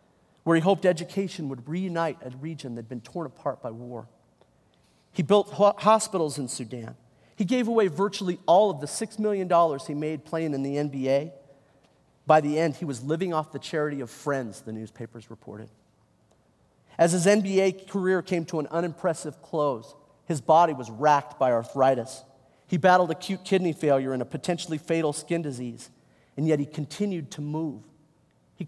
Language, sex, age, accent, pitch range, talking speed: English, male, 40-59, American, 135-180 Hz, 175 wpm